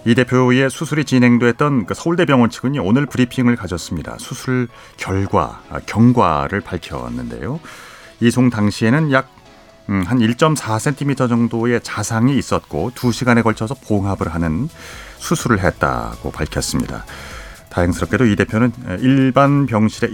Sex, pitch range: male, 90-130 Hz